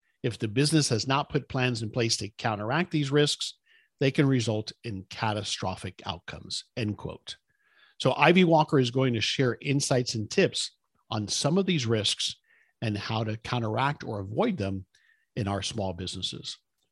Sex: male